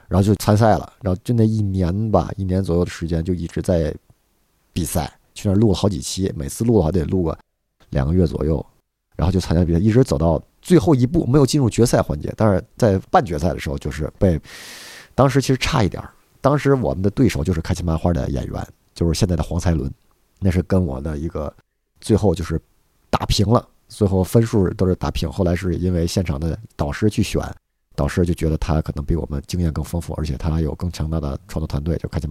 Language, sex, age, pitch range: Chinese, male, 50-69, 75-100 Hz